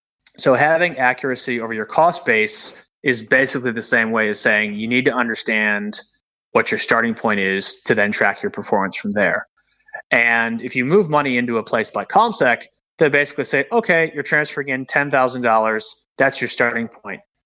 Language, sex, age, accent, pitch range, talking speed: English, male, 30-49, American, 110-140 Hz, 180 wpm